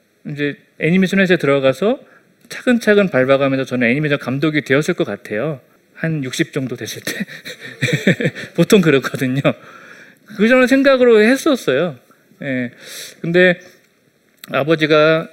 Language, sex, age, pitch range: Korean, male, 30-49, 135-200 Hz